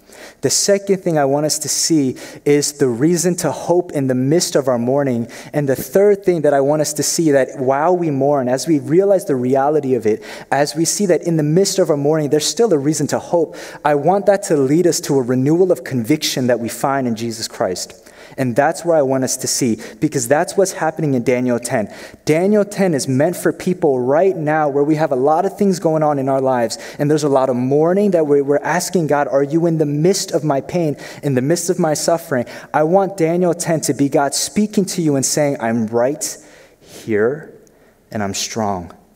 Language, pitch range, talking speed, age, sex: English, 135-170 Hz, 230 wpm, 20-39, male